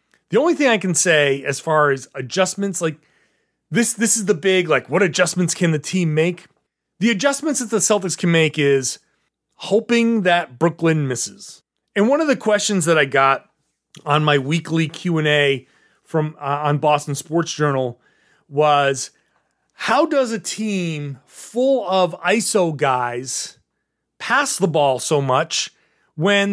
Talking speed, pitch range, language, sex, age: 150 wpm, 155-215 Hz, English, male, 30-49